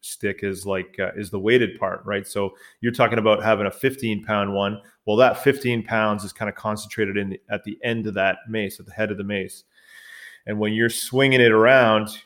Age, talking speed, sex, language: 30-49, 220 wpm, male, English